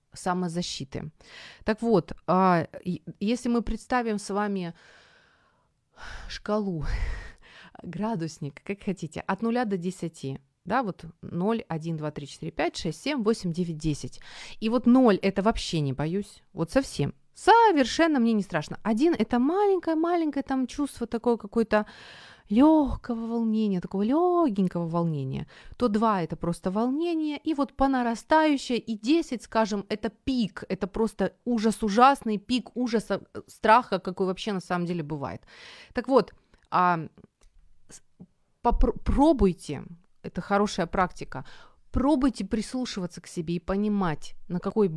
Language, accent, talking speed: Ukrainian, native, 130 wpm